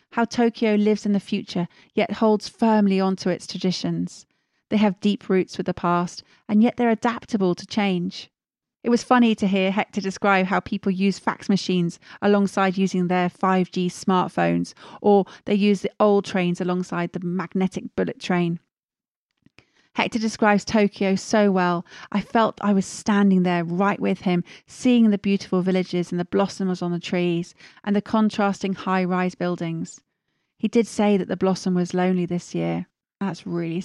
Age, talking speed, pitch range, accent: 40-59, 170 wpm, 180-205 Hz, British